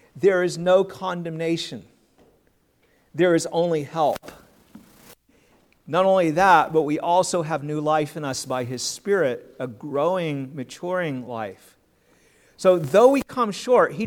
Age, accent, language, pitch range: 50-69, American, English, 145-190 Hz